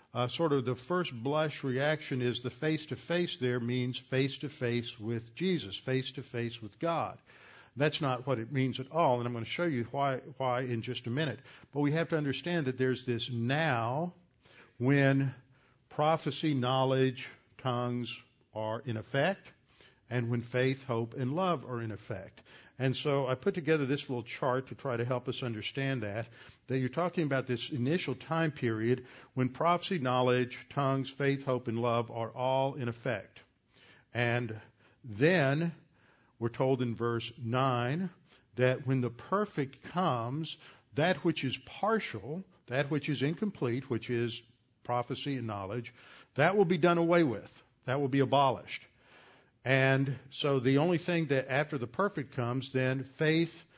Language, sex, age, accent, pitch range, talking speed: English, male, 60-79, American, 120-145 Hz, 160 wpm